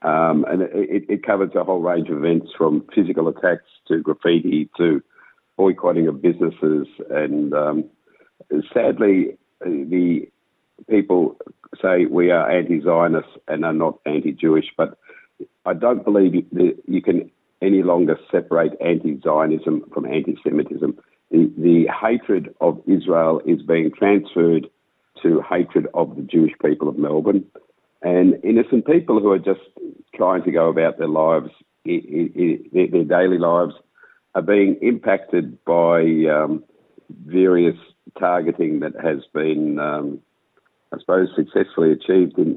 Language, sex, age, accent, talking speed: Hebrew, male, 50-69, Australian, 125 wpm